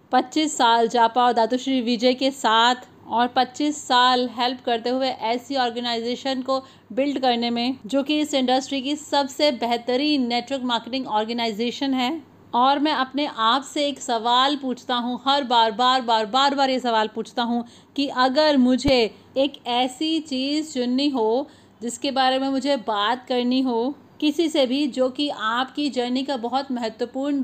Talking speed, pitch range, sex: 165 wpm, 240-275 Hz, female